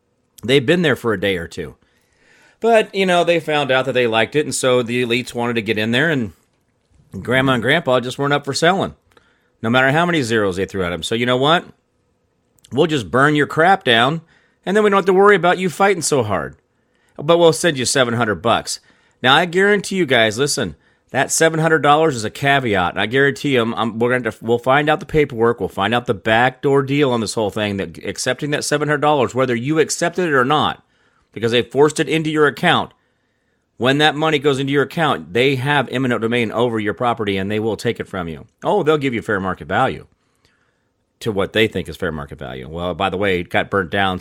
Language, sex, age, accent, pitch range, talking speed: English, male, 40-59, American, 110-150 Hz, 235 wpm